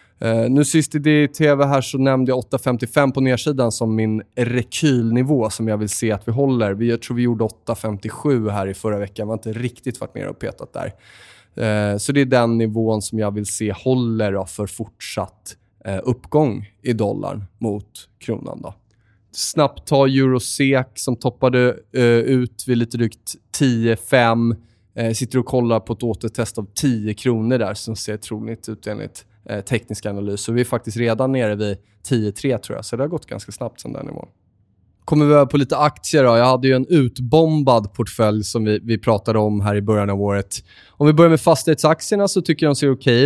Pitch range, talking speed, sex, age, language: 110-130 Hz, 200 wpm, male, 20-39, Swedish